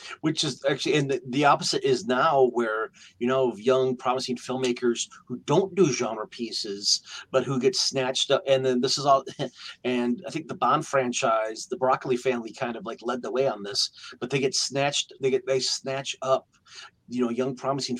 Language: English